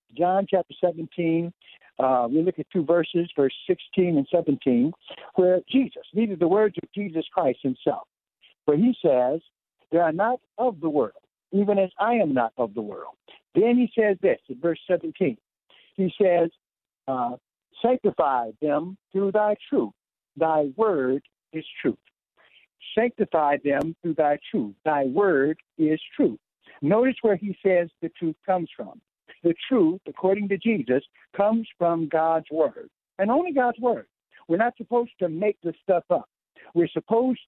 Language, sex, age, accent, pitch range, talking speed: English, male, 60-79, American, 150-210 Hz, 155 wpm